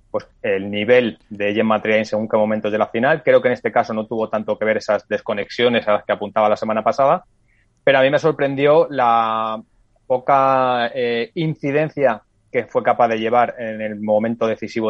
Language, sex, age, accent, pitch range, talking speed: Spanish, male, 20-39, Spanish, 110-130 Hz, 200 wpm